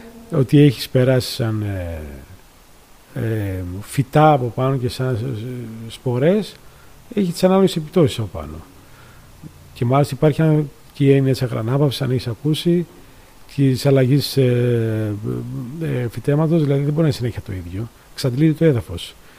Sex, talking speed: male, 125 wpm